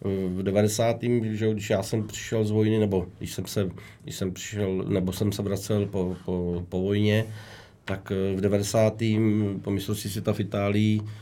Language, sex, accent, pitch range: Czech, male, native, 100-105 Hz